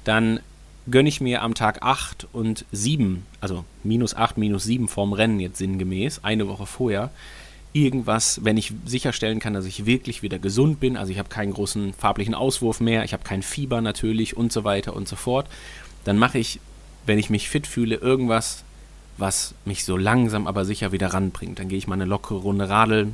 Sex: male